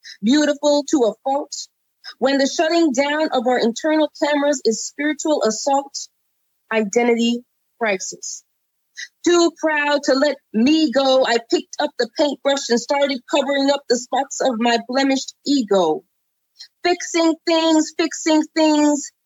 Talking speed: 130 wpm